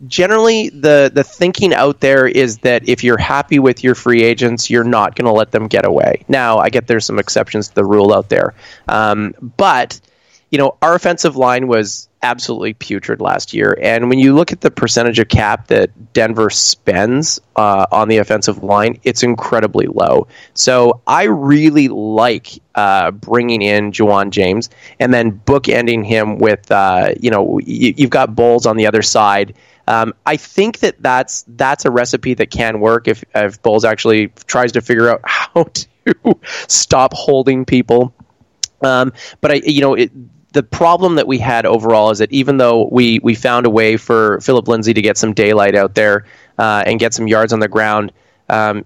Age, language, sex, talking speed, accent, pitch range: 20-39, English, male, 190 wpm, American, 110-130 Hz